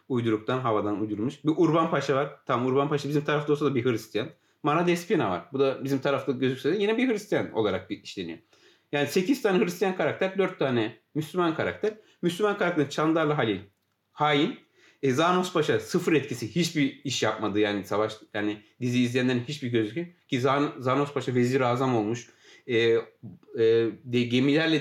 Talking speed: 165 wpm